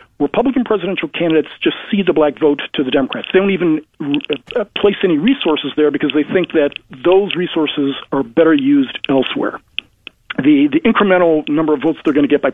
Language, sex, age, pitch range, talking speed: English, male, 50-69, 145-195 Hz, 185 wpm